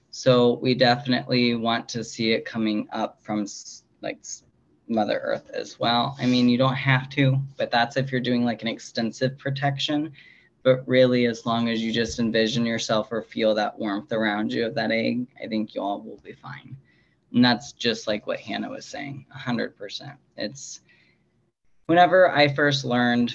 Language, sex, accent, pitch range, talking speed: English, male, American, 110-130 Hz, 175 wpm